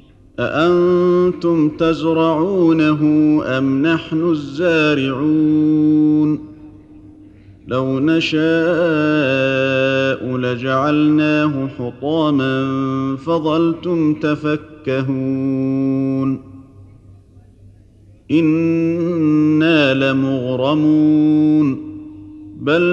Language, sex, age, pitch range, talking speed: Arabic, male, 50-69, 130-160 Hz, 35 wpm